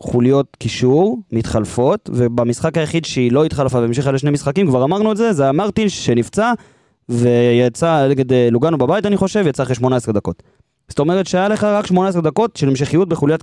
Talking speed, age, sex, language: 170 wpm, 20-39, male, Hebrew